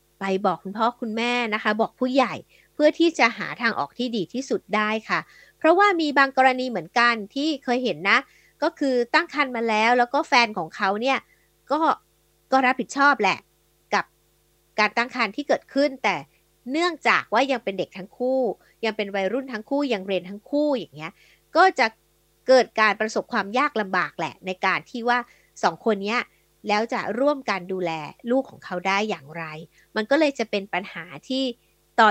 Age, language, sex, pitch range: 60-79, Thai, female, 195-260 Hz